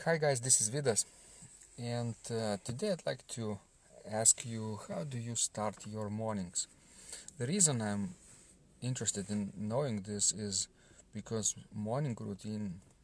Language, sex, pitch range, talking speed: English, male, 100-120 Hz, 140 wpm